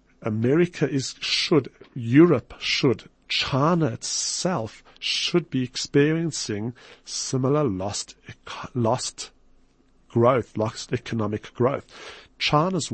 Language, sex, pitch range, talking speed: English, male, 115-145 Hz, 85 wpm